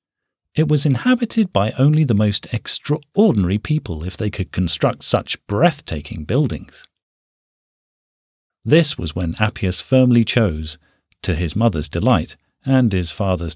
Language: English